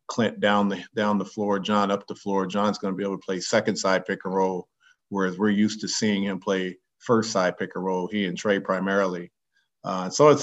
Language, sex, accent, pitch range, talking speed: English, male, American, 95-110 Hz, 235 wpm